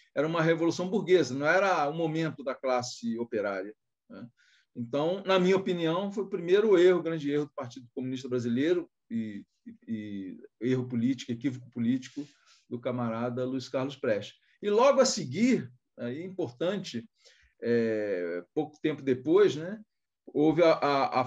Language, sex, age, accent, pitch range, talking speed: Portuguese, male, 40-59, Brazilian, 125-180 Hz, 150 wpm